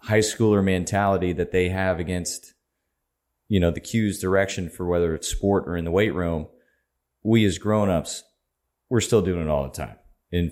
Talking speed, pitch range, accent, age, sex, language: 185 wpm, 85-100 Hz, American, 30-49, male, English